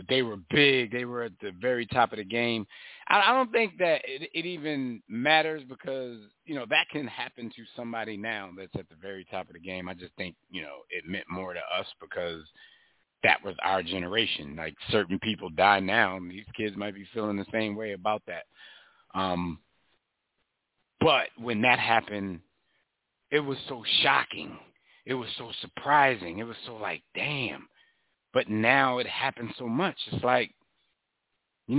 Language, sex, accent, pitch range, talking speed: English, male, American, 100-130 Hz, 175 wpm